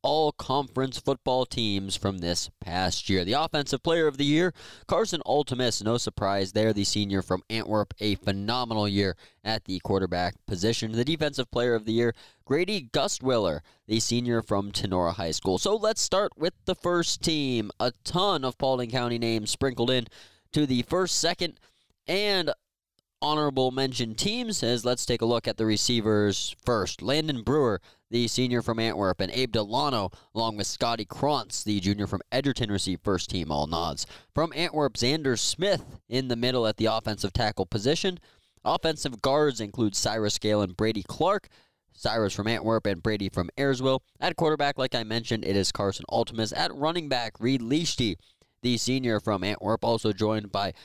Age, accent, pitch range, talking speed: 20-39, American, 100-130 Hz, 170 wpm